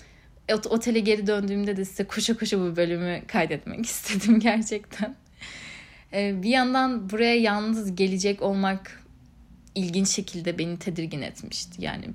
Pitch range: 190-235 Hz